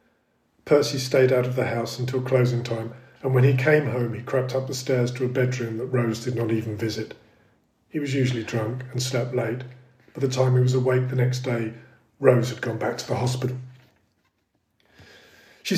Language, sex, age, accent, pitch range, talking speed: English, male, 40-59, British, 120-135 Hz, 200 wpm